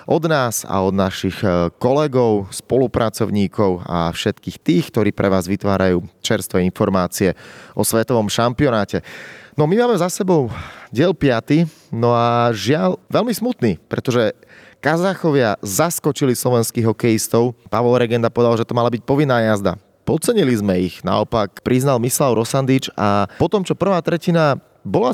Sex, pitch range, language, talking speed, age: male, 115-150 Hz, Slovak, 140 wpm, 30-49